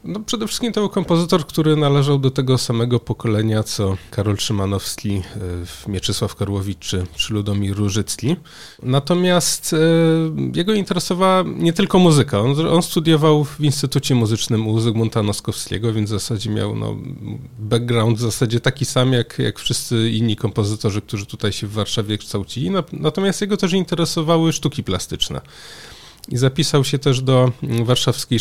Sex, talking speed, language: male, 150 wpm, Polish